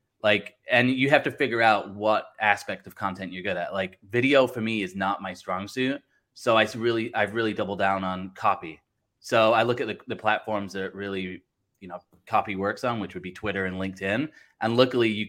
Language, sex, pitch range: English, male, 100-125 Hz